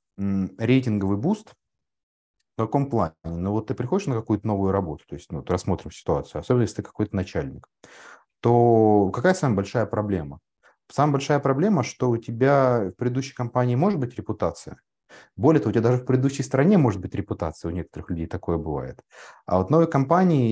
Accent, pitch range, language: native, 95-130 Hz, Russian